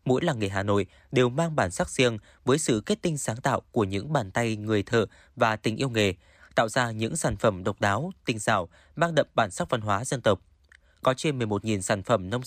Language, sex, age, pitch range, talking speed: Vietnamese, male, 20-39, 110-145 Hz, 235 wpm